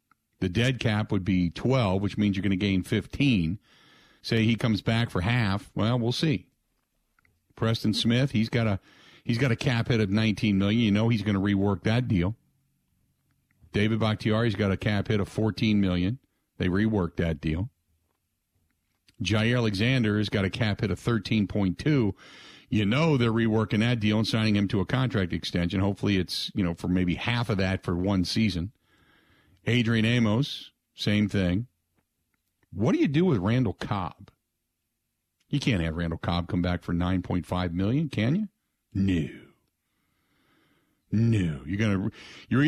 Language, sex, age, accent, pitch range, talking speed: English, male, 50-69, American, 95-120 Hz, 165 wpm